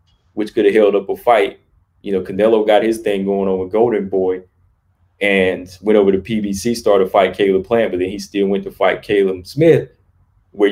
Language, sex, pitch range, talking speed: English, male, 95-115 Hz, 215 wpm